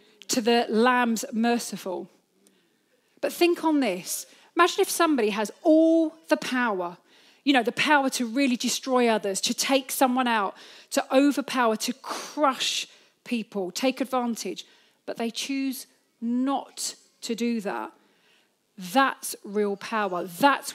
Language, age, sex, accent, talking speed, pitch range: English, 40-59, female, British, 130 wpm, 220-275 Hz